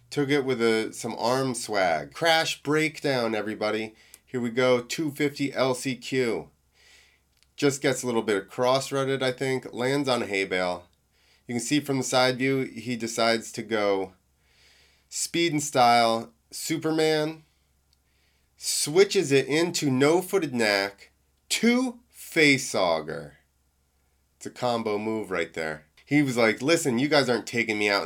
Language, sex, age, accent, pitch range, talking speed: English, male, 30-49, American, 95-145 Hz, 140 wpm